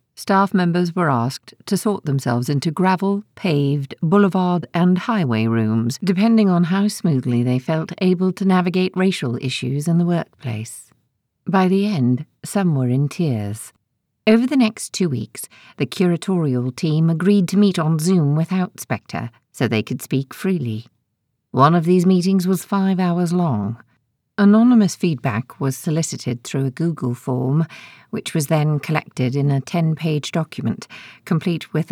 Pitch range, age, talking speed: 135-190 Hz, 50-69, 150 wpm